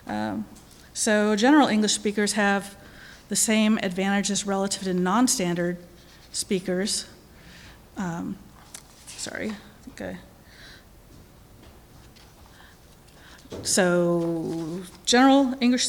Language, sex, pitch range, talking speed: English, female, 185-235 Hz, 75 wpm